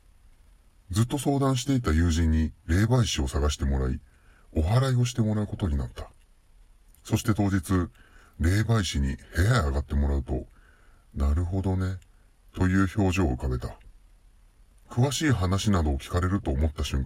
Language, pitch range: Japanese, 75-100 Hz